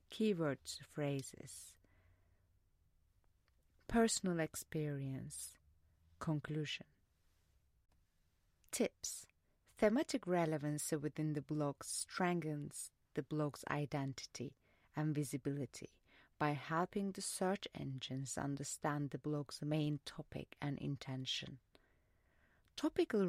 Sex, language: female, English